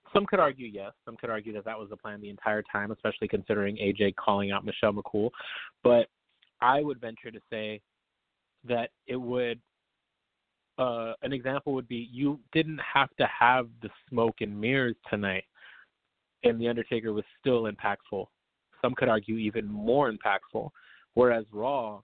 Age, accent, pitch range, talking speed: 30-49, American, 105-120 Hz, 165 wpm